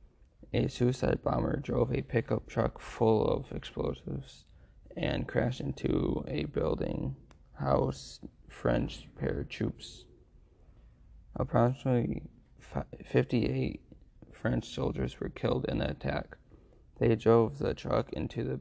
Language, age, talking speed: English, 20-39, 105 wpm